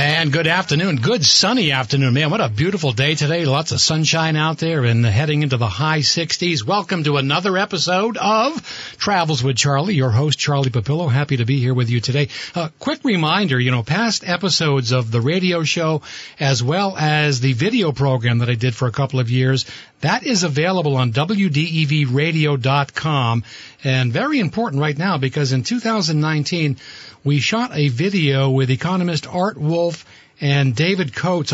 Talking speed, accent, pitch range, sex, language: 175 wpm, American, 135-170 Hz, male, English